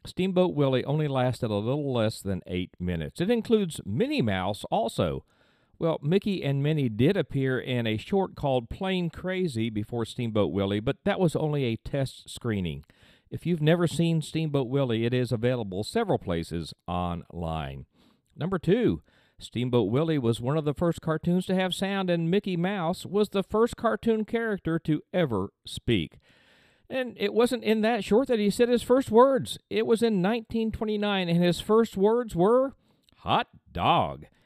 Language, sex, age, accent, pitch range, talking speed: English, male, 50-69, American, 120-200 Hz, 165 wpm